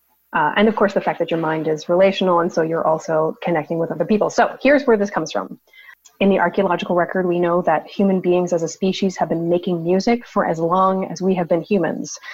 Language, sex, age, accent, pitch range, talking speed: English, female, 30-49, American, 175-225 Hz, 240 wpm